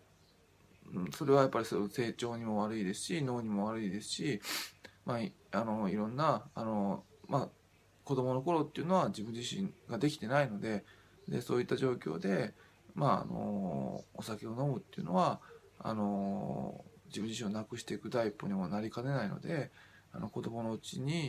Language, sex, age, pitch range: Japanese, male, 20-39, 105-140 Hz